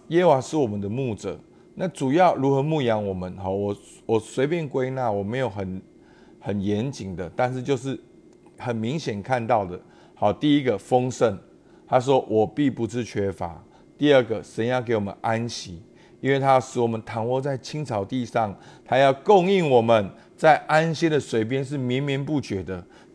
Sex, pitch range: male, 110-145 Hz